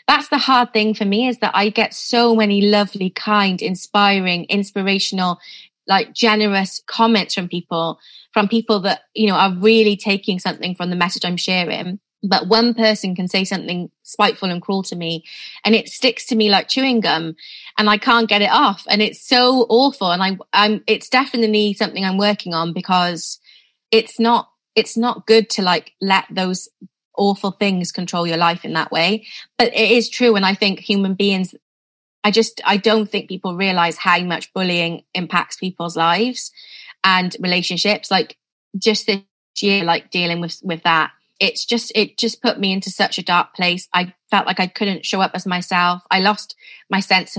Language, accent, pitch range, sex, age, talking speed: English, British, 180-220 Hz, female, 20-39, 185 wpm